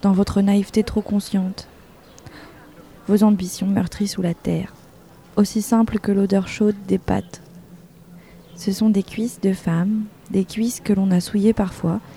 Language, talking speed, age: French, 155 wpm, 20-39